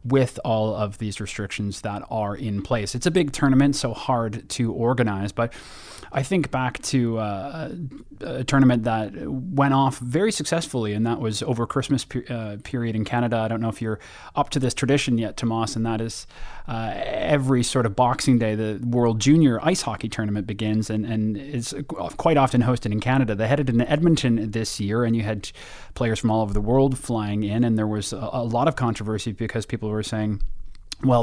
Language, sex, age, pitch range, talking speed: English, male, 30-49, 110-130 Hz, 200 wpm